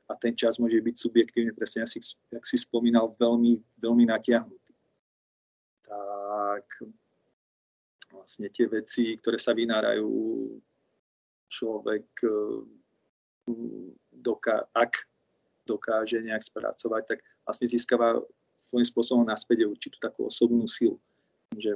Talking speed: 110 wpm